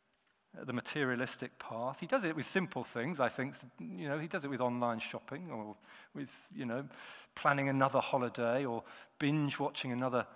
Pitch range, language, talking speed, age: 120-160 Hz, English, 175 wpm, 40-59